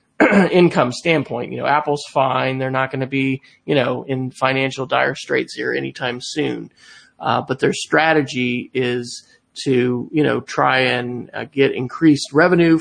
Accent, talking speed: American, 160 wpm